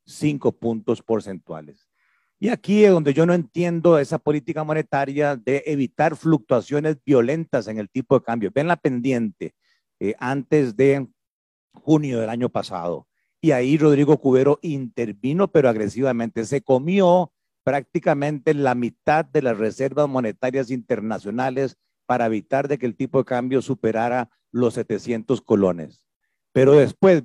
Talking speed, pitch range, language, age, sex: 140 wpm, 120-155 Hz, Spanish, 40-59, male